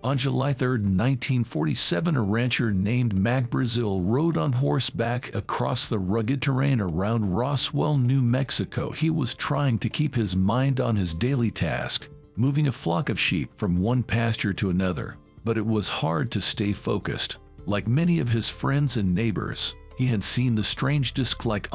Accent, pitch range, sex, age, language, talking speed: American, 100-135 Hz, male, 50-69, English, 170 wpm